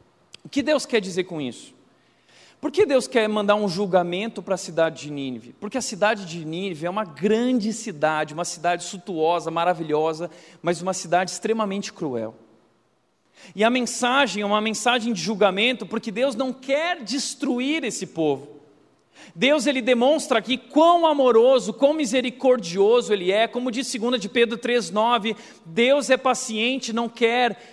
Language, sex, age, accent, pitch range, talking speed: Portuguese, male, 40-59, Brazilian, 170-245 Hz, 155 wpm